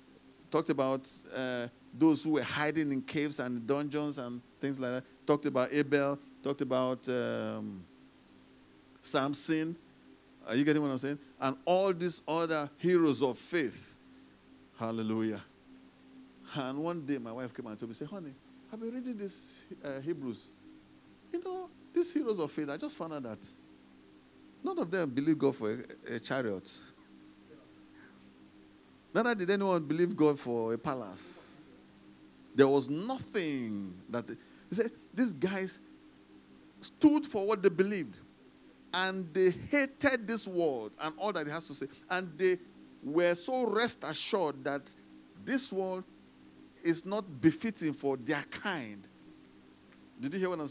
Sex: male